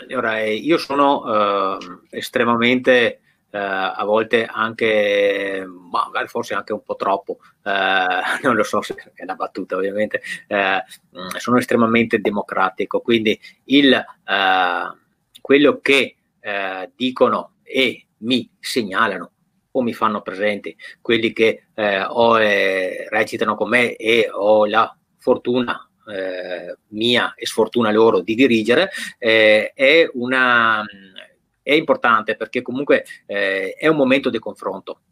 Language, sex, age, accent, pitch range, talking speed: Italian, male, 30-49, native, 105-125 Hz, 125 wpm